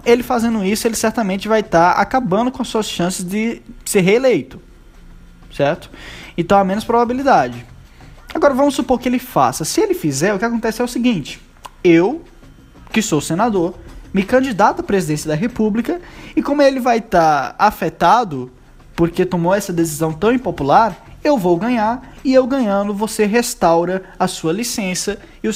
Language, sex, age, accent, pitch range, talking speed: Portuguese, male, 20-39, Brazilian, 165-225 Hz, 165 wpm